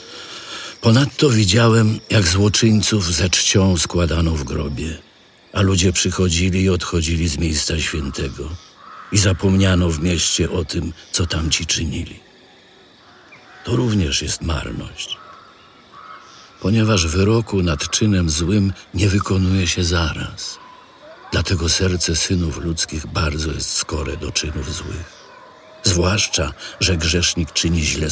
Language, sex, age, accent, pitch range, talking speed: Polish, male, 50-69, native, 80-100 Hz, 115 wpm